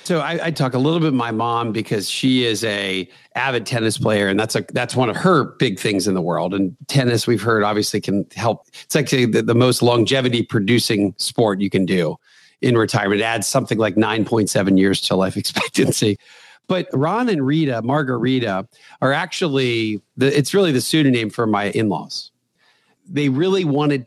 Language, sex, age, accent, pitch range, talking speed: English, male, 40-59, American, 110-145 Hz, 185 wpm